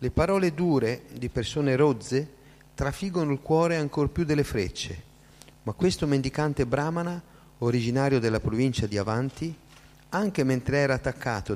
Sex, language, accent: male, Italian, native